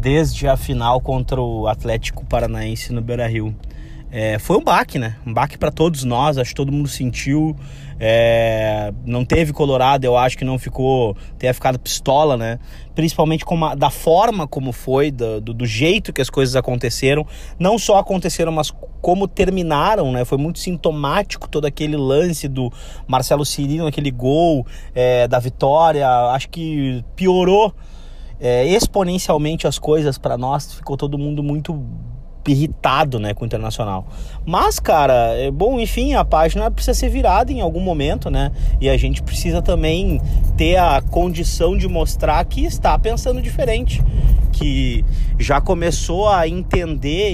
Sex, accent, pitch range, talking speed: male, Brazilian, 125-160 Hz, 155 wpm